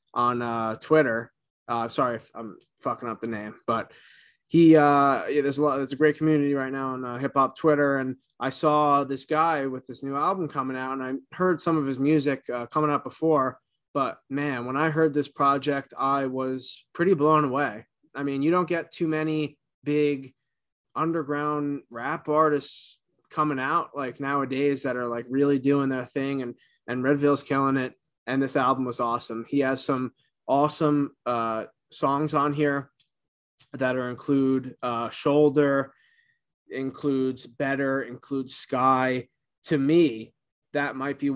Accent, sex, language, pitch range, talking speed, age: American, male, English, 125-145 Hz, 170 wpm, 20-39